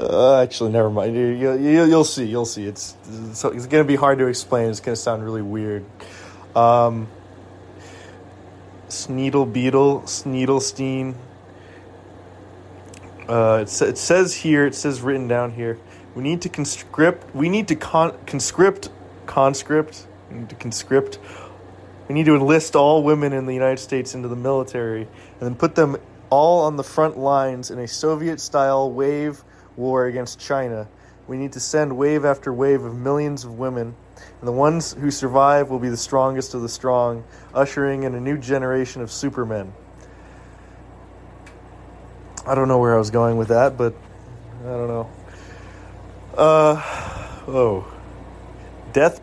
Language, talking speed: English, 155 wpm